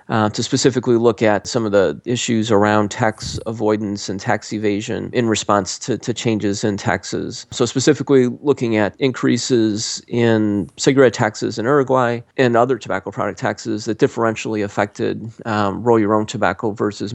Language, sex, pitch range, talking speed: English, male, 105-120 Hz, 150 wpm